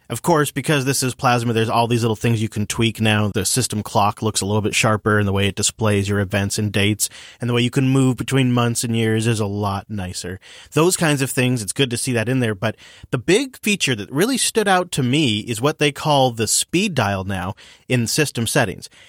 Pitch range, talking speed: 110-160 Hz, 245 wpm